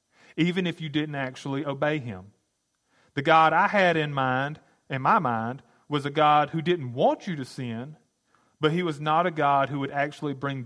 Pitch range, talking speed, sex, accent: 115-145 Hz, 195 wpm, male, American